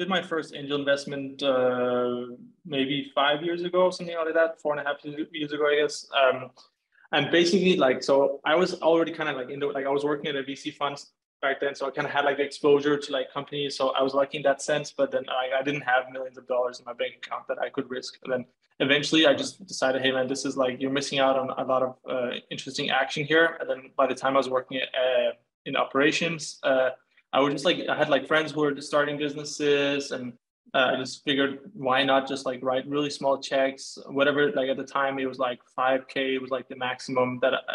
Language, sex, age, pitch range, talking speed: English, male, 20-39, 130-145 Hz, 240 wpm